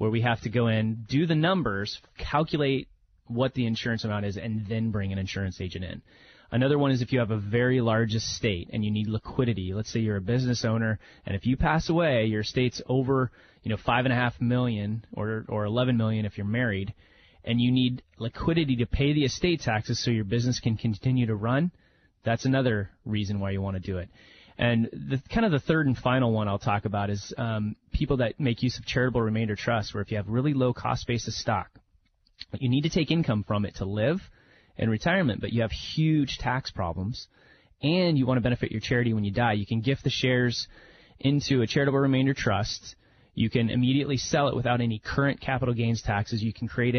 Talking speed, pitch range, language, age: 215 wpm, 105-130 Hz, English, 30-49